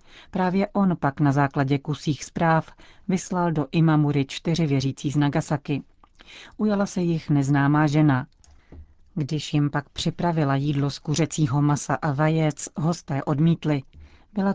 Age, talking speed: 40-59, 130 wpm